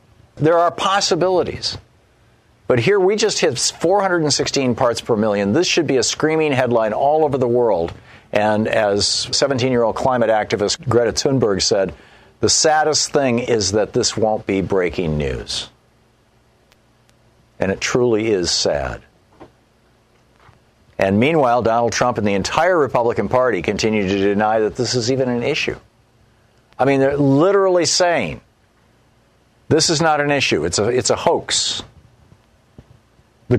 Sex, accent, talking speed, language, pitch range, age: male, American, 140 wpm, English, 110-145 Hz, 50-69